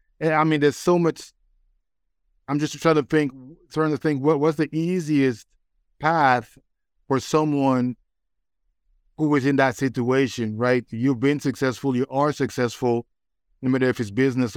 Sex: male